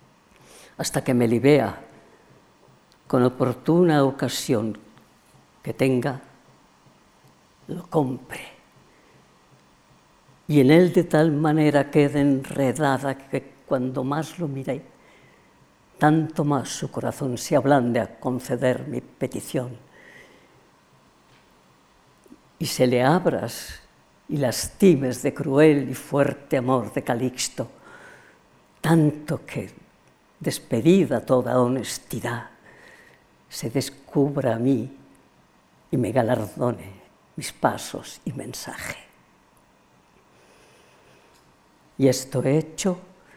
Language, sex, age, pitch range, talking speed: Spanish, female, 50-69, 125-155 Hz, 90 wpm